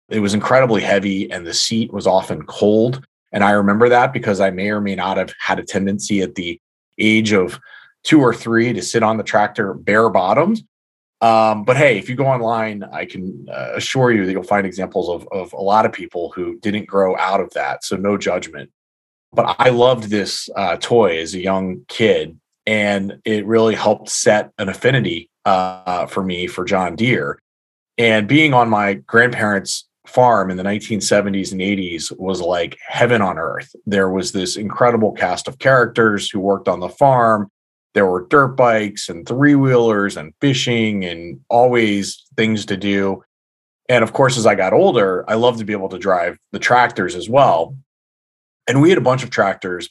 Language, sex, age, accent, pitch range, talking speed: English, male, 30-49, American, 95-115 Hz, 190 wpm